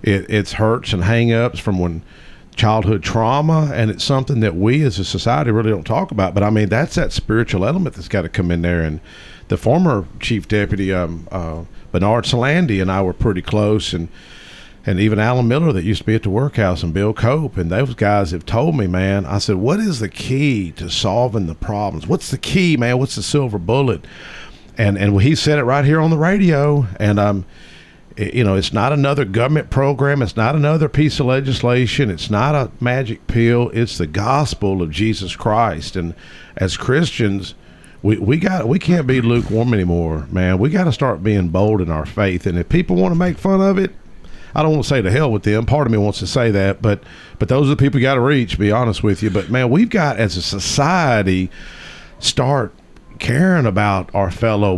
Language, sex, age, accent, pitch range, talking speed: English, male, 50-69, American, 100-140 Hz, 215 wpm